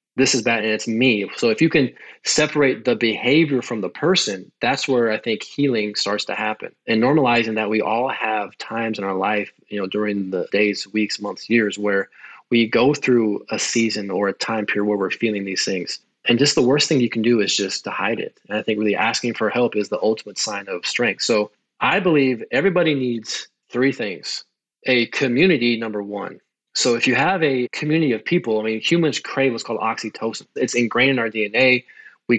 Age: 20-39